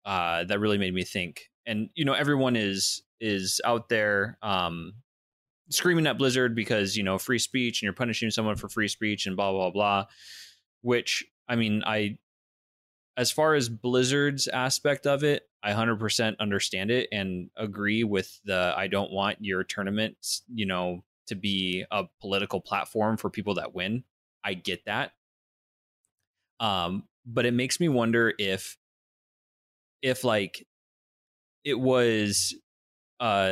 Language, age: English, 20-39